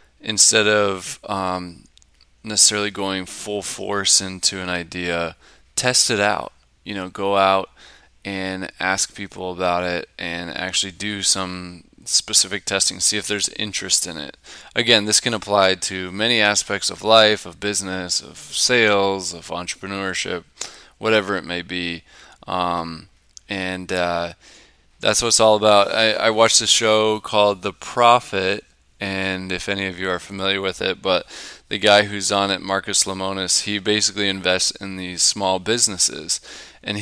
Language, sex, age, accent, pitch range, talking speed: English, male, 20-39, American, 95-105 Hz, 150 wpm